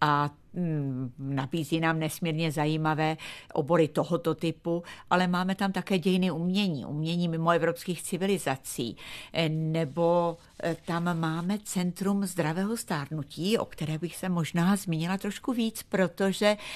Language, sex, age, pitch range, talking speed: Czech, female, 50-69, 155-190 Hz, 120 wpm